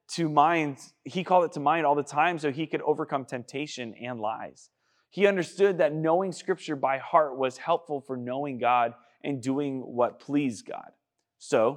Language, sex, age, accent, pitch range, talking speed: English, male, 20-39, American, 125-155 Hz, 180 wpm